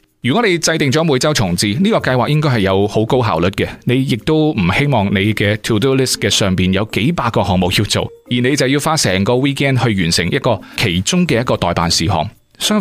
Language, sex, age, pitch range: Chinese, male, 30-49, 100-140 Hz